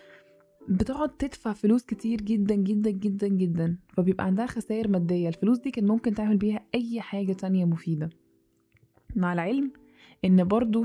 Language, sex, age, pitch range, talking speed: English, female, 20-39, 180-220 Hz, 145 wpm